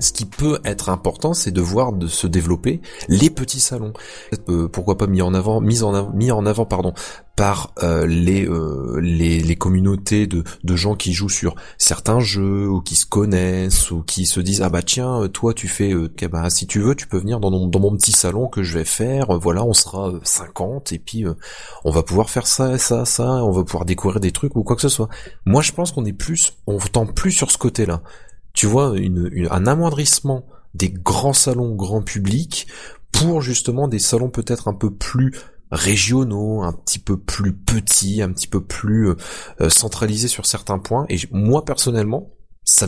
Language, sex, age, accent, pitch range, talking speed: French, male, 30-49, French, 90-120 Hz, 210 wpm